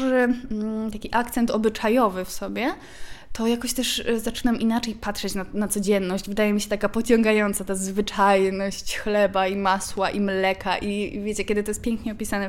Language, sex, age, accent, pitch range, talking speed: Polish, female, 20-39, native, 195-230 Hz, 160 wpm